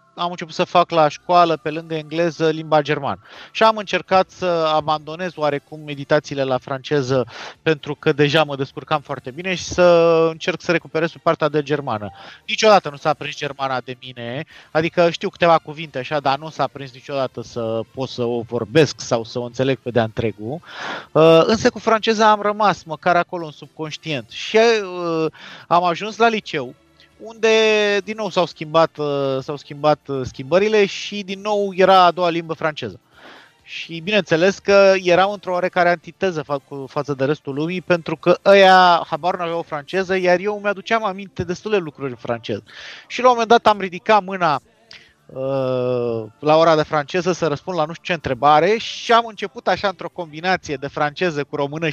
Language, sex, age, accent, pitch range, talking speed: Romanian, male, 30-49, native, 145-185 Hz, 175 wpm